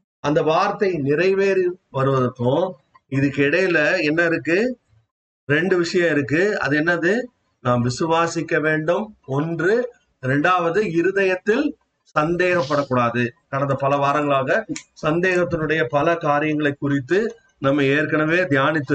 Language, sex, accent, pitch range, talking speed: Tamil, male, native, 145-205 Hz, 90 wpm